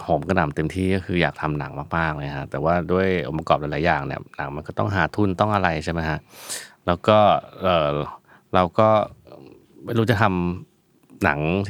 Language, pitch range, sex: Thai, 80-100 Hz, male